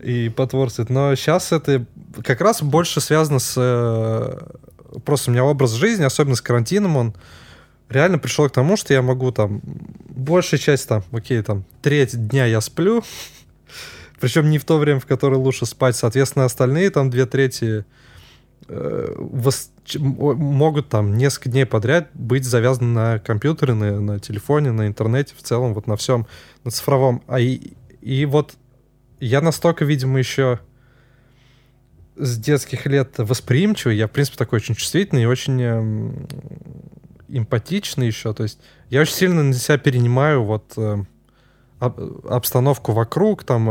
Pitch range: 120-145 Hz